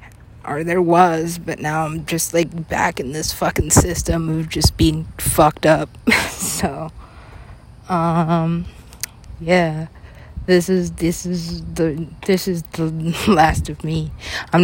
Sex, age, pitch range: female, 20-39, 145-170 Hz